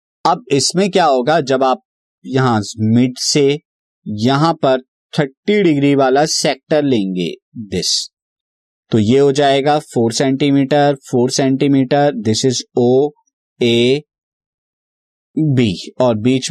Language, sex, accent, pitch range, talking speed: Hindi, male, native, 125-155 Hz, 115 wpm